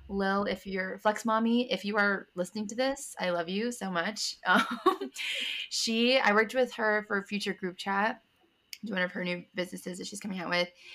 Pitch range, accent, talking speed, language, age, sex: 175-215 Hz, American, 215 wpm, English, 20-39, female